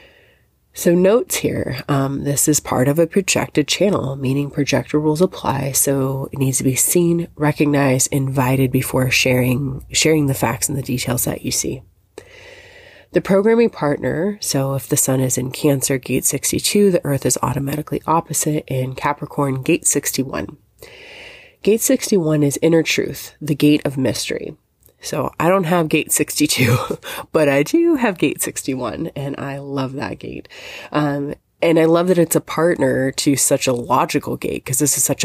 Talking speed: 165 wpm